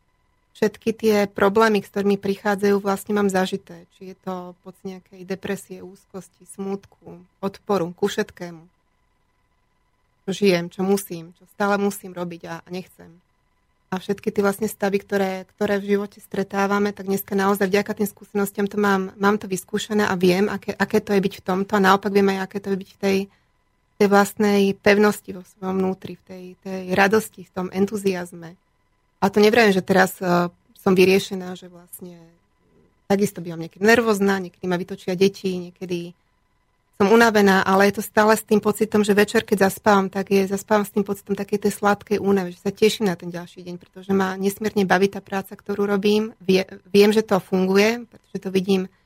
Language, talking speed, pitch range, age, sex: Slovak, 175 wpm, 185-205 Hz, 30-49, female